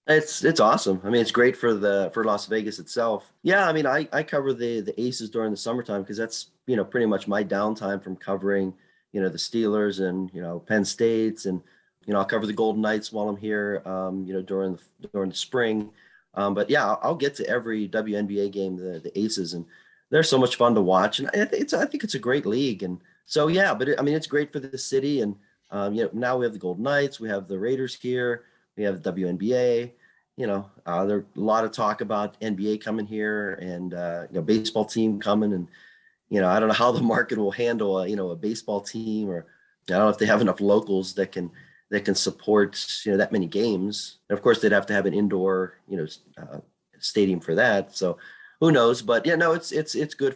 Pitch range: 95-115 Hz